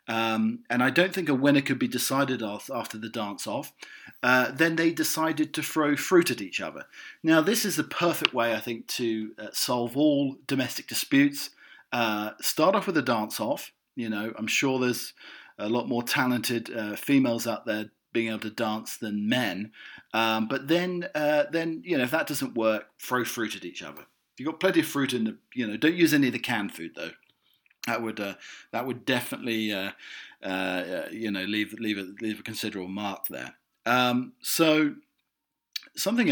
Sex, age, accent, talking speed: male, 40-59, British, 200 wpm